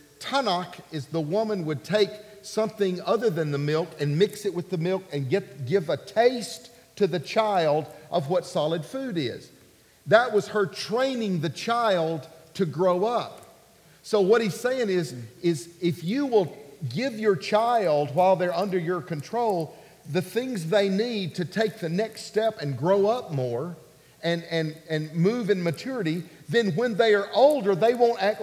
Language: English